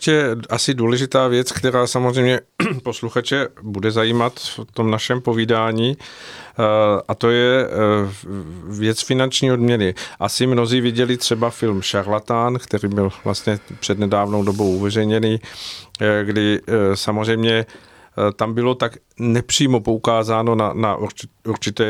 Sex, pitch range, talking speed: male, 105-120 Hz, 110 wpm